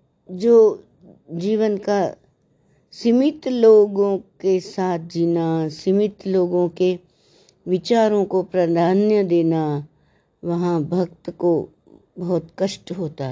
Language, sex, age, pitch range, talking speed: Hindi, female, 60-79, 155-205 Hz, 95 wpm